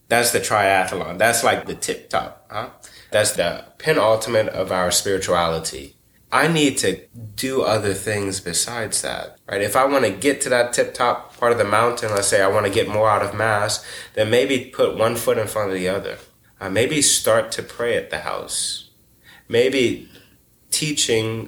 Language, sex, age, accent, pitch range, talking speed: English, male, 20-39, American, 95-120 Hz, 180 wpm